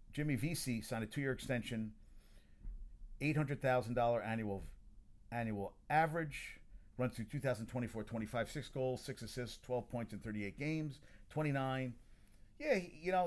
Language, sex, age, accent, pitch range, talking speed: English, male, 40-59, American, 105-130 Hz, 130 wpm